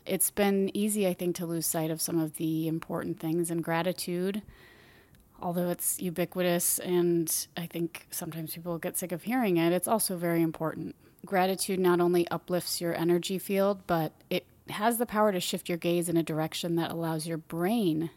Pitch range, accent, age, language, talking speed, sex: 165-200 Hz, American, 30-49, English, 185 wpm, female